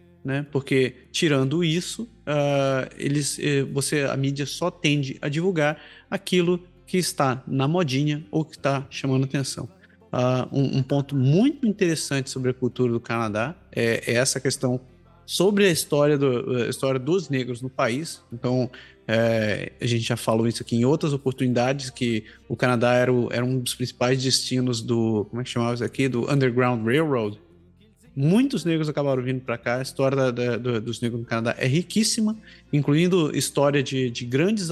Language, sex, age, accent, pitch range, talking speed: Portuguese, male, 20-39, Brazilian, 125-150 Hz, 175 wpm